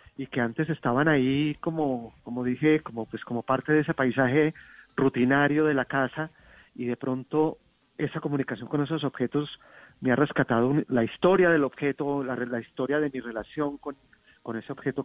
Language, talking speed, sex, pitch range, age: Spanish, 175 wpm, male, 125-150 Hz, 40-59